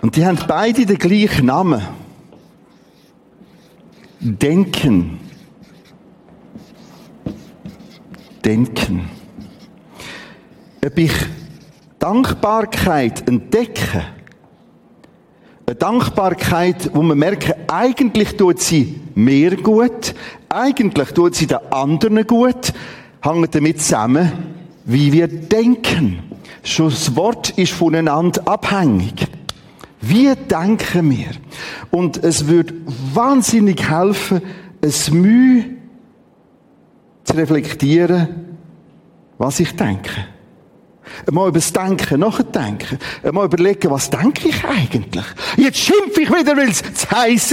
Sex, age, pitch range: male, 40-59, 160-245 Hz